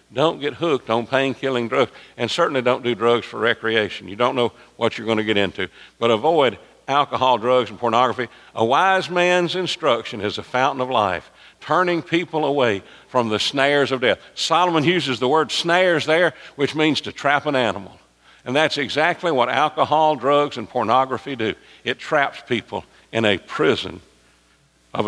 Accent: American